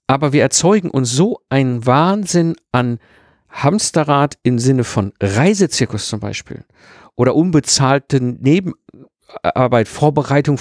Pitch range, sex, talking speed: 125-155 Hz, male, 105 wpm